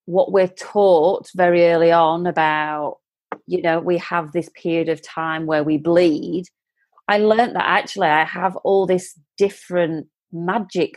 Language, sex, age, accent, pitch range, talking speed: English, female, 30-49, British, 155-190 Hz, 155 wpm